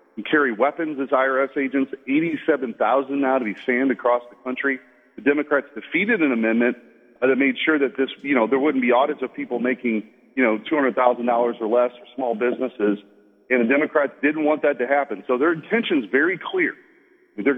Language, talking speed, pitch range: English, 175 wpm, 125-170 Hz